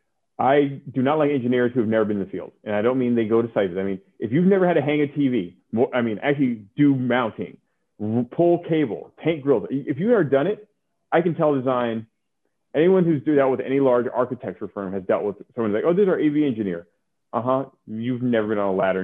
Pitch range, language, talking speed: 115-150 Hz, English, 240 wpm